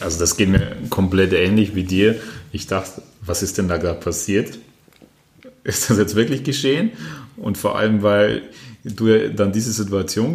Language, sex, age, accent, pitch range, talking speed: German, male, 30-49, German, 95-110 Hz, 170 wpm